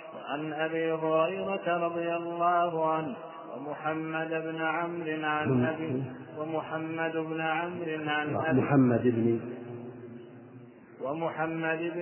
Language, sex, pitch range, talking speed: Arabic, male, 160-175 Hz, 70 wpm